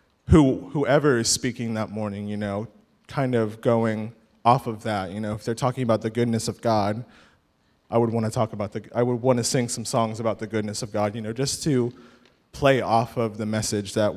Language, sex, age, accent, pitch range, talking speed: English, male, 20-39, American, 115-130 Hz, 220 wpm